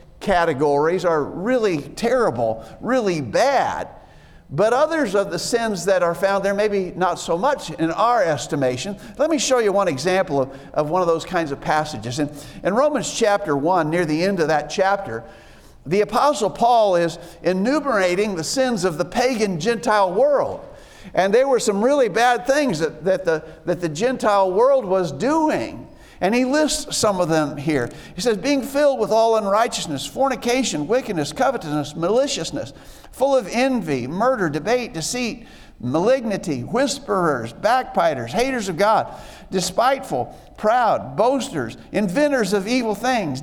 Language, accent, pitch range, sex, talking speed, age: English, American, 170-250 Hz, male, 155 wpm, 50-69